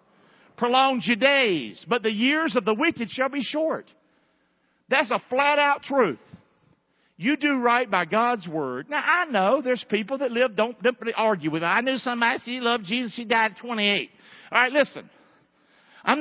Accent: American